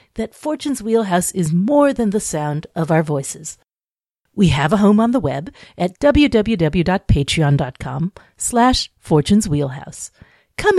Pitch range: 155-235 Hz